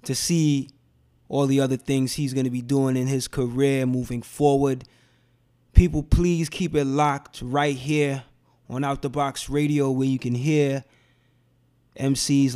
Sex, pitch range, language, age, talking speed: male, 125-145 Hz, English, 20-39, 155 wpm